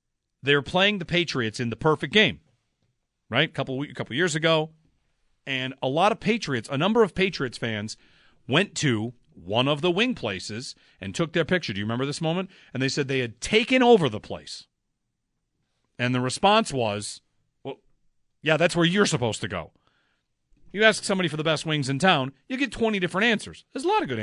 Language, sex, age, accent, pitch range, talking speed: English, male, 40-59, American, 125-175 Hz, 200 wpm